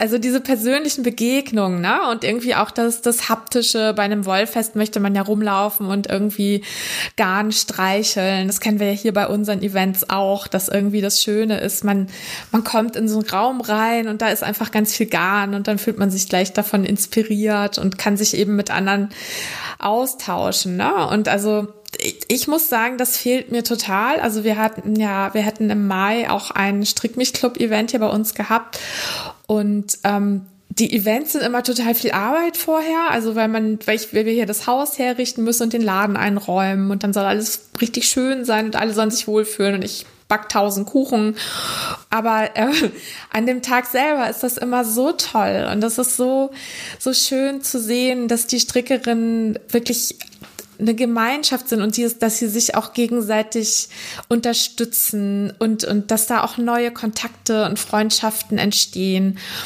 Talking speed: 180 wpm